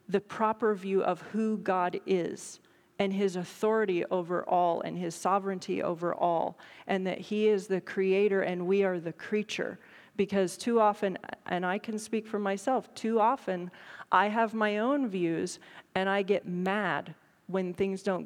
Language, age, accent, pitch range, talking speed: English, 40-59, American, 180-210 Hz, 170 wpm